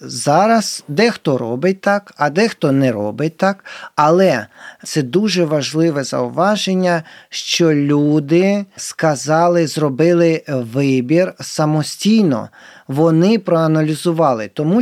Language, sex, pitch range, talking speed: Ukrainian, male, 155-215 Hz, 95 wpm